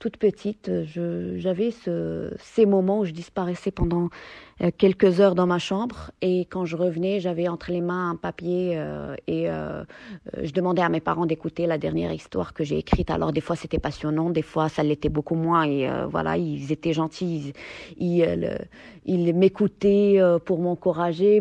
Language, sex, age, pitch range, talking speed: French, female, 30-49, 170-195 Hz, 180 wpm